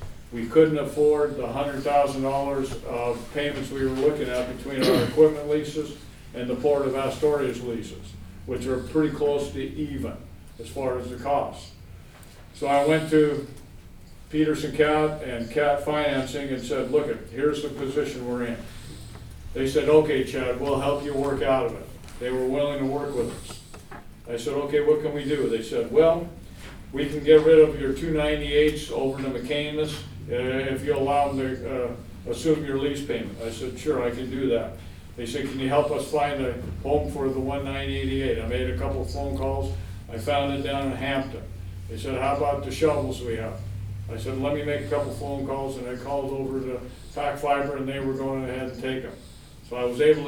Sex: male